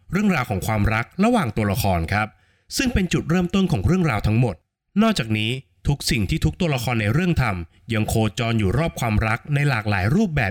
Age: 20-39